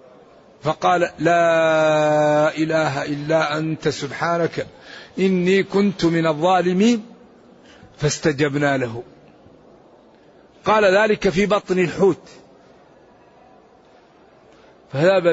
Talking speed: 70 wpm